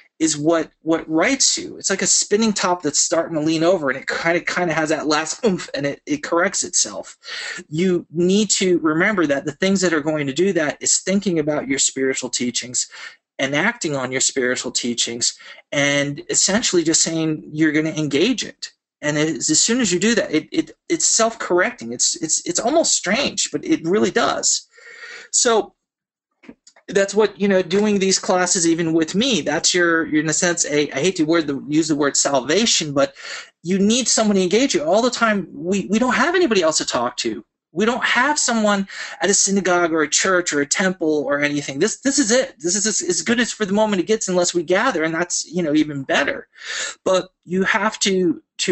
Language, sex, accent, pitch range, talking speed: English, male, American, 155-215 Hz, 215 wpm